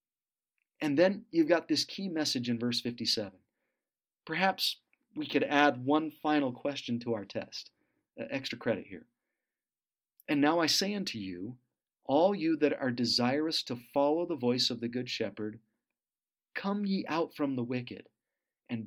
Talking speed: 160 wpm